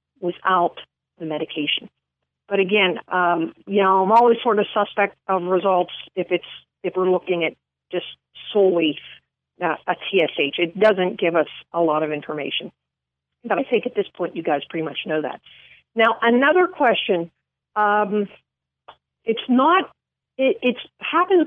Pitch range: 180-230 Hz